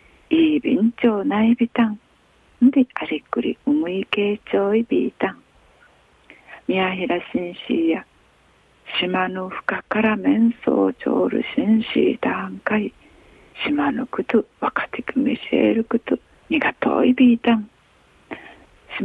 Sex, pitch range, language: female, 210-275 Hz, Japanese